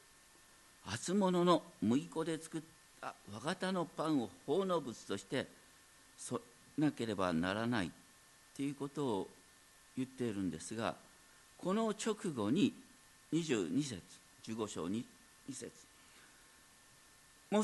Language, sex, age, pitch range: Japanese, male, 50-69, 110-185 Hz